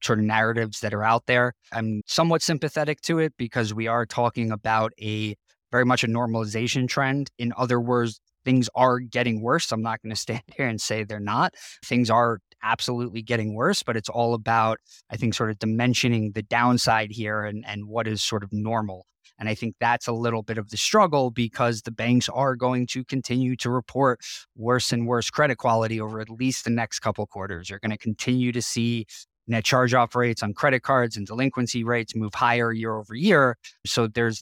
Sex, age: male, 20-39